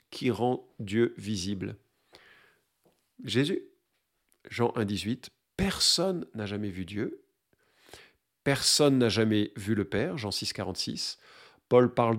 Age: 50-69